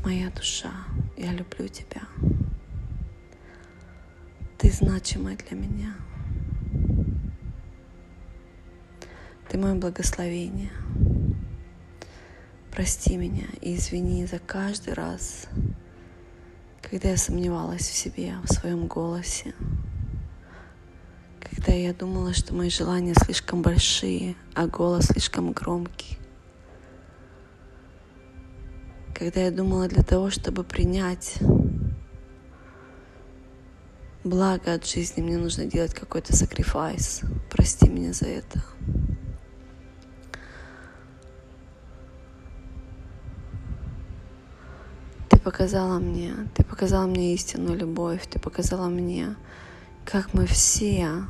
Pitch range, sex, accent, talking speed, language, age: 85-110 Hz, female, native, 85 wpm, Russian, 20-39